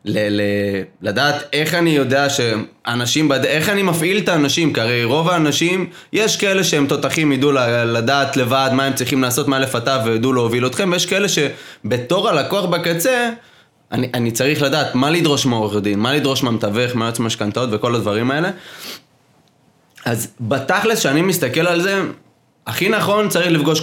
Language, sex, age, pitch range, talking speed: Hebrew, male, 20-39, 125-170 Hz, 165 wpm